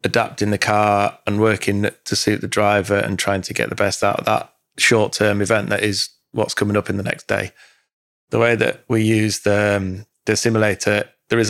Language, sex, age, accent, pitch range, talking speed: English, male, 20-39, British, 100-105 Hz, 210 wpm